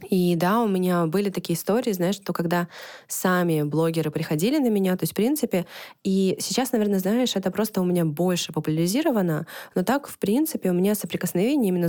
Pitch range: 160-200 Hz